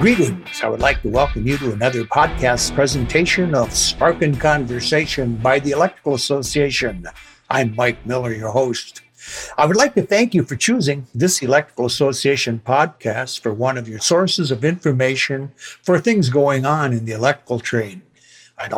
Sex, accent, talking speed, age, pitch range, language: male, American, 165 wpm, 60-79, 120-145 Hz, English